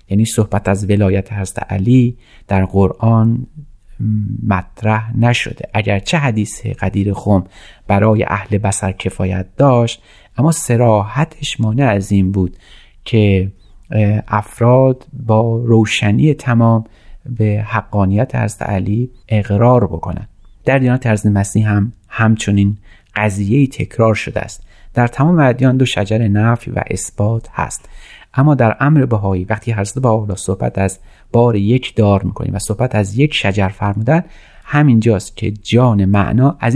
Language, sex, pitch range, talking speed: Persian, male, 100-120 Hz, 130 wpm